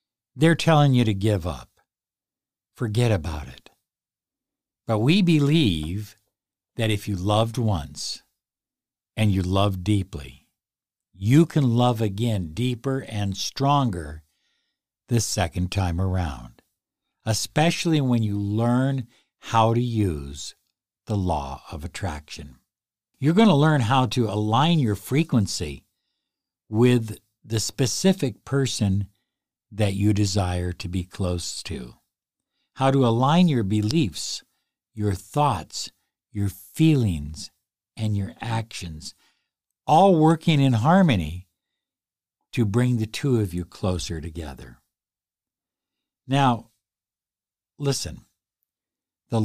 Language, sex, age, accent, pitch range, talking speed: English, male, 60-79, American, 95-130 Hz, 110 wpm